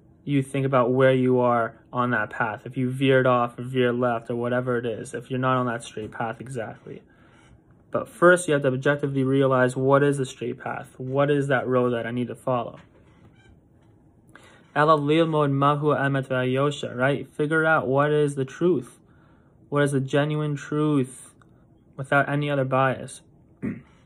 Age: 20-39